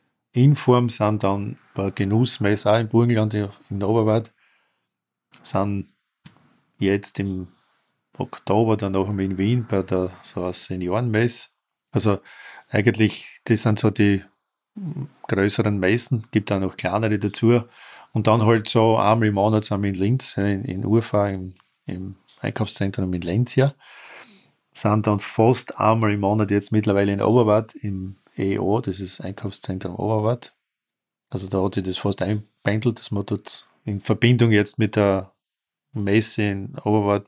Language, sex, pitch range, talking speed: German, male, 100-115 Hz, 140 wpm